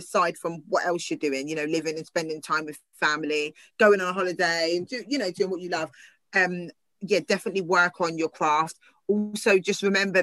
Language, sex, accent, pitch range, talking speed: English, female, British, 165-200 Hz, 210 wpm